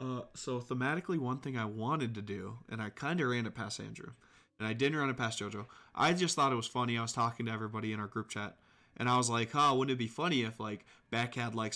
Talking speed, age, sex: 270 wpm, 20-39, male